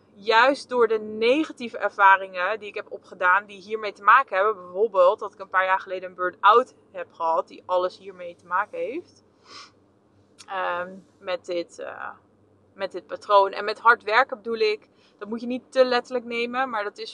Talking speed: 180 wpm